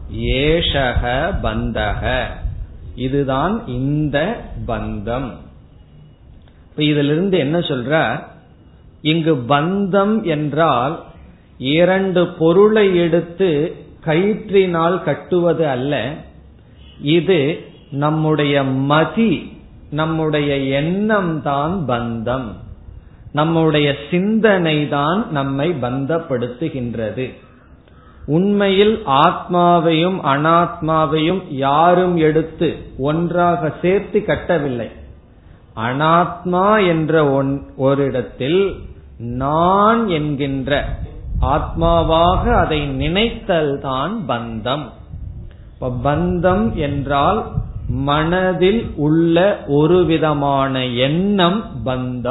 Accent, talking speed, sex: native, 60 wpm, male